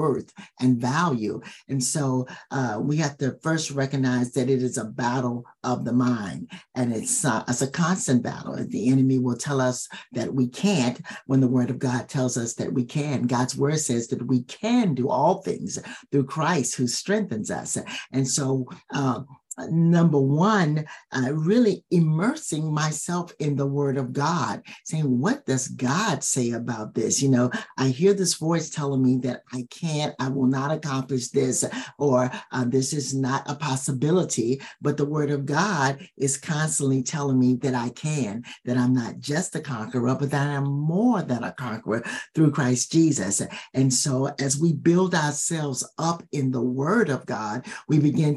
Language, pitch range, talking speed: English, 125-155 Hz, 180 wpm